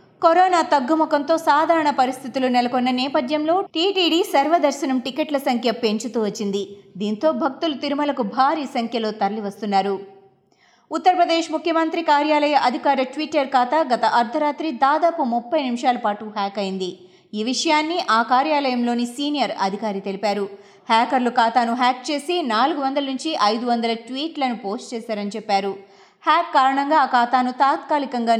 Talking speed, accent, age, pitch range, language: 115 wpm, native, 30-49, 210-290 Hz, Telugu